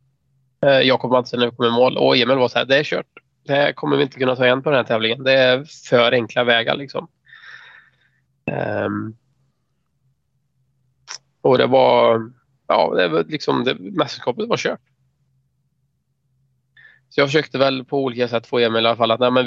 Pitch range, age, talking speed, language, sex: 115-135 Hz, 20-39, 180 wpm, Swedish, male